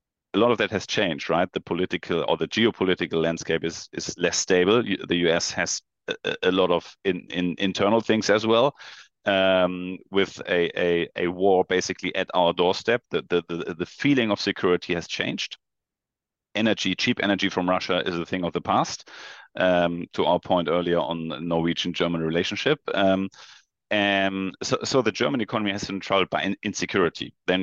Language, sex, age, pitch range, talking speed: English, male, 30-49, 85-95 Hz, 180 wpm